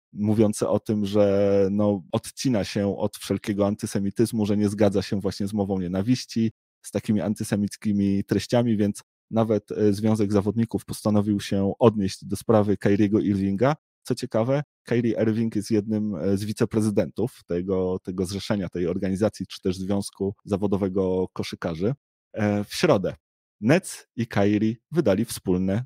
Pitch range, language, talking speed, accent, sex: 100-110 Hz, Polish, 135 wpm, native, male